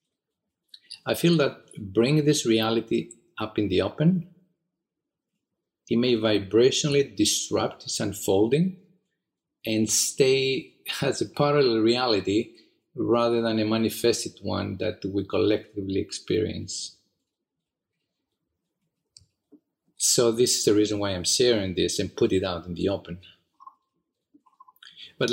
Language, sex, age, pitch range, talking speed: English, male, 40-59, 105-155 Hz, 115 wpm